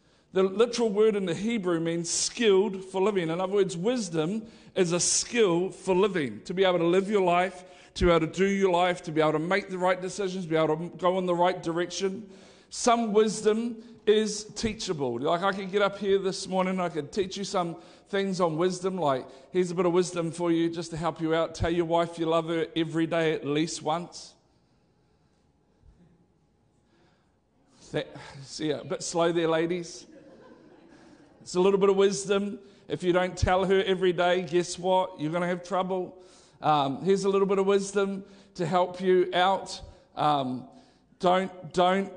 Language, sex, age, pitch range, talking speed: English, male, 50-69, 175-195 Hz, 190 wpm